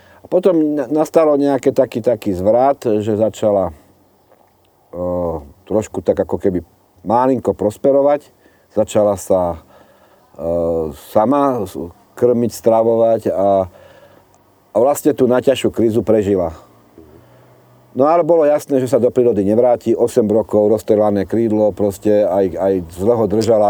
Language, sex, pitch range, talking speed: Slovak, male, 100-125 Hz, 115 wpm